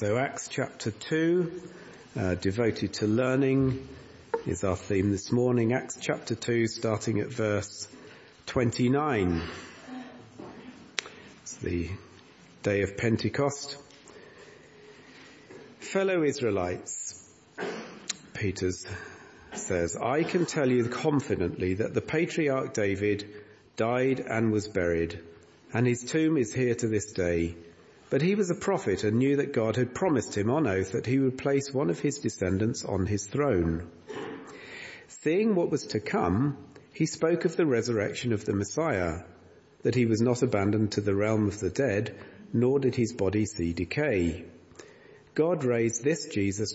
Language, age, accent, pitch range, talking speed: English, 50-69, British, 100-140 Hz, 140 wpm